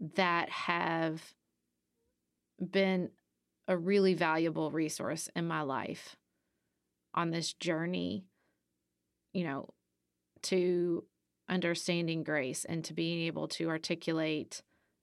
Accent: American